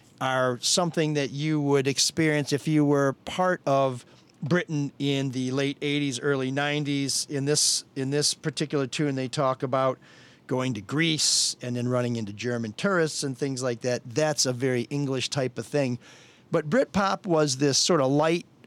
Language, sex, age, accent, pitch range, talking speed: English, male, 50-69, American, 120-155 Hz, 175 wpm